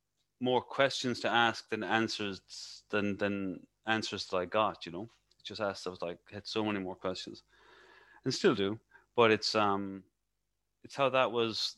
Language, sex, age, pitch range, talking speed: English, male, 30-49, 95-115 Hz, 175 wpm